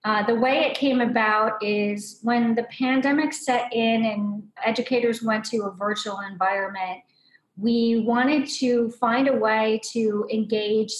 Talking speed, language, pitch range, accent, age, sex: 145 wpm, English, 205-235 Hz, American, 40-59, female